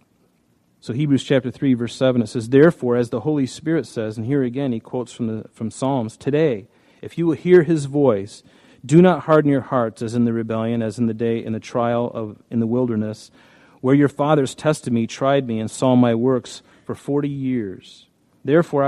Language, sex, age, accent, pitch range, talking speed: English, male, 40-59, American, 120-140 Hz, 205 wpm